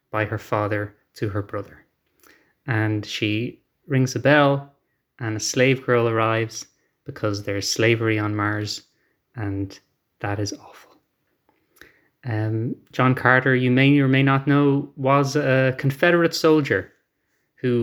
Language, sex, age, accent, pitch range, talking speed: English, male, 20-39, Irish, 110-145 Hz, 130 wpm